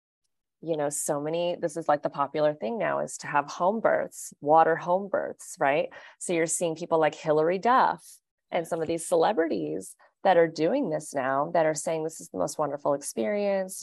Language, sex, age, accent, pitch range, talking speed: English, female, 30-49, American, 140-175 Hz, 200 wpm